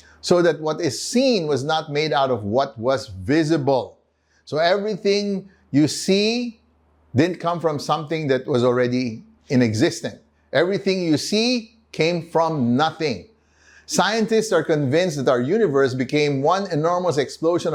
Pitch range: 135-195 Hz